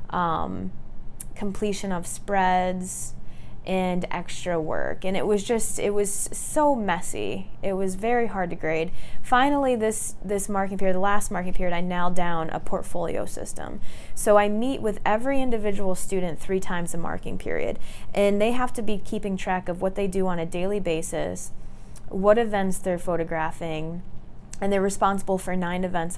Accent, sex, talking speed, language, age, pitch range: American, female, 165 wpm, English, 20-39, 175-205 Hz